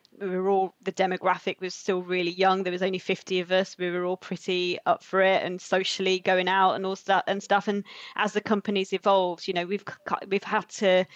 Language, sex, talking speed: English, female, 225 wpm